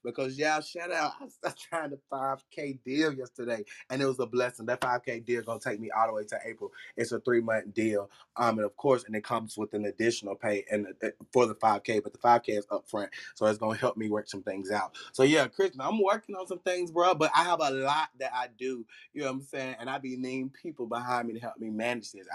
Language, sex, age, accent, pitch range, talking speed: English, male, 20-39, American, 120-145 Hz, 265 wpm